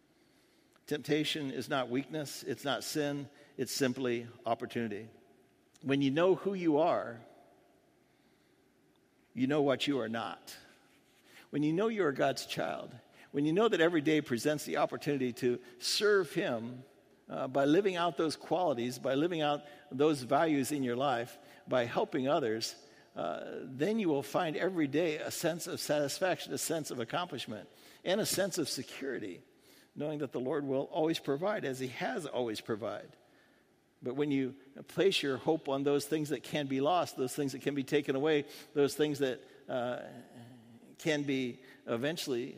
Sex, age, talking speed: male, 60-79, 165 wpm